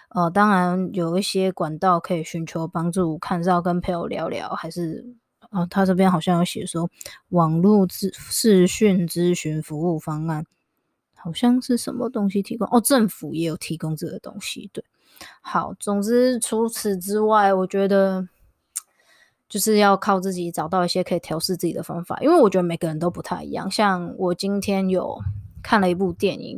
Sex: female